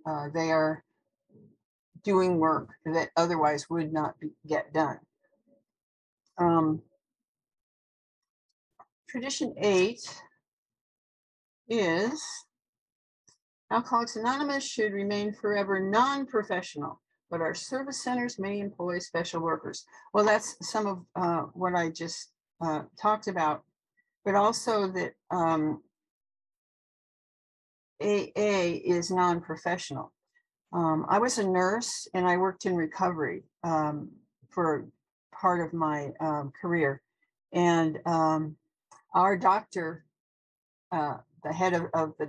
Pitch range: 165-225 Hz